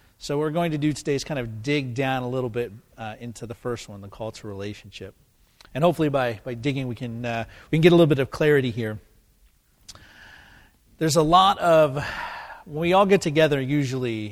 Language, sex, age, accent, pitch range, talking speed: English, male, 40-59, American, 115-150 Hz, 215 wpm